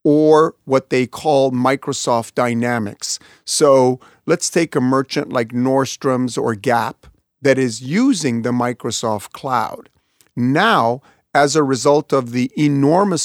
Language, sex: English, male